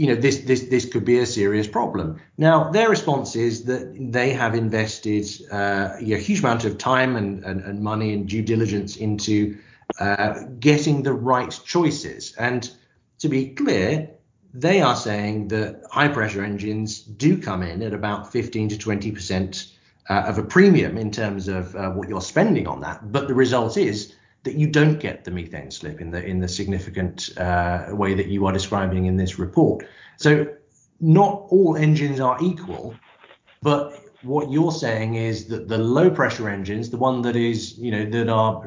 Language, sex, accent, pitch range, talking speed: English, male, British, 105-135 Hz, 185 wpm